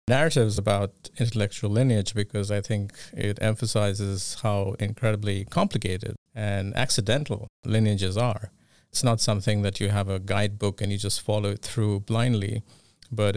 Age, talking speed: 50-69, 145 wpm